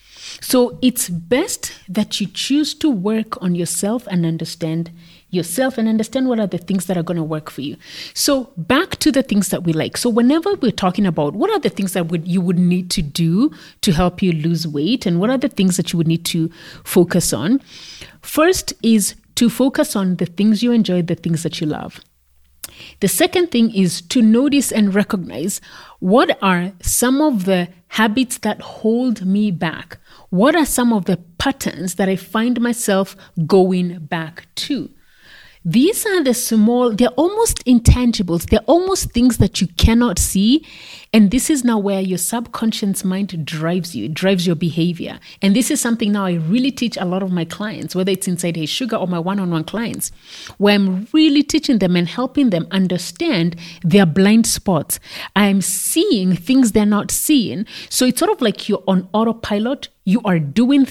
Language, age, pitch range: English, 30-49, 180-245 Hz